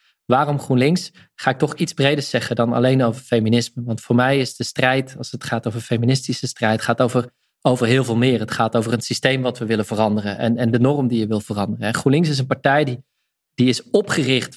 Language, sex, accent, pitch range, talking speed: Dutch, male, Dutch, 115-140 Hz, 225 wpm